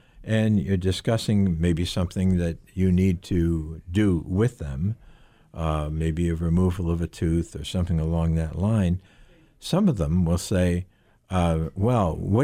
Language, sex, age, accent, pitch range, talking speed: English, male, 60-79, American, 85-120 Hz, 155 wpm